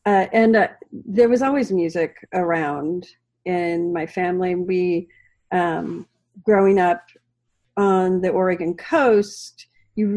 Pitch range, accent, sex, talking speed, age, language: 170-200 Hz, American, female, 120 wpm, 40-59, English